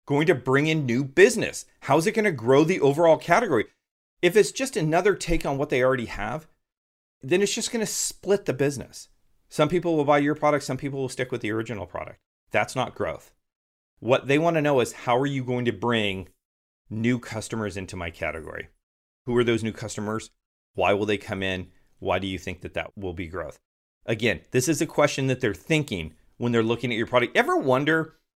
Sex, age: male, 40-59